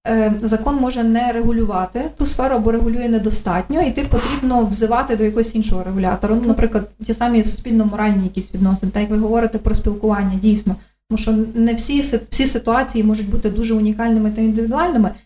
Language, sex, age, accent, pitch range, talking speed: Ukrainian, female, 20-39, native, 215-235 Hz, 165 wpm